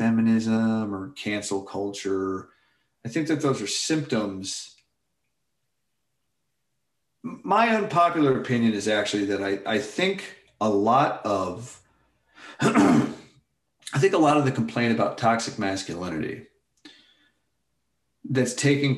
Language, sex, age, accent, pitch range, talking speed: English, male, 40-59, American, 100-130 Hz, 110 wpm